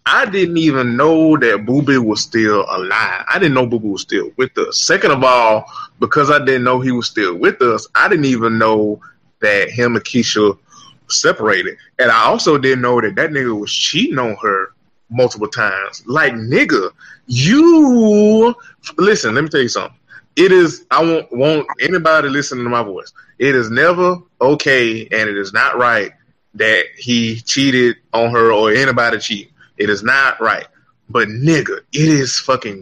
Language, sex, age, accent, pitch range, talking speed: English, male, 20-39, American, 125-200 Hz, 175 wpm